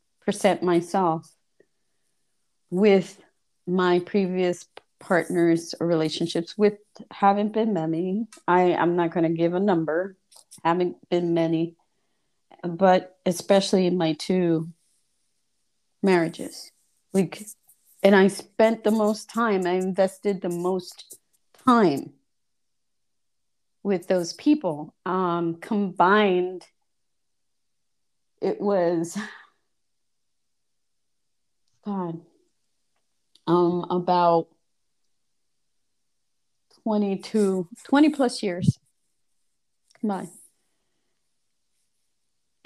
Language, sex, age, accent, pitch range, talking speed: English, female, 30-49, American, 175-220 Hz, 75 wpm